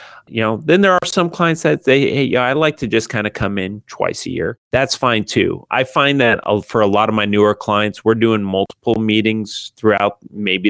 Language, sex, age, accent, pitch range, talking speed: English, male, 30-49, American, 100-115 Hz, 225 wpm